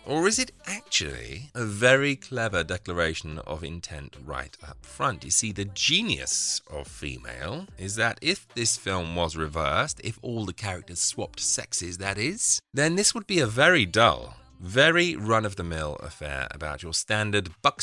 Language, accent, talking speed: English, British, 160 wpm